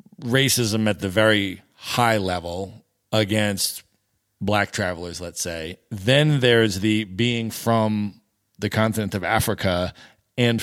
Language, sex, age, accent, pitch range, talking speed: English, male, 40-59, American, 100-115 Hz, 120 wpm